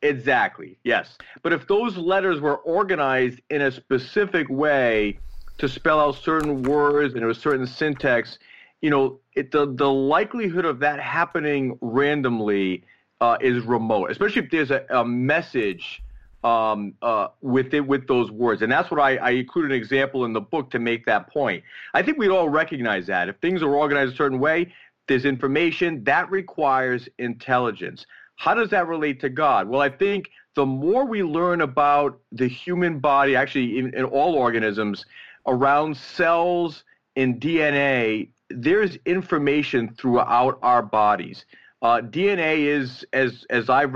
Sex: male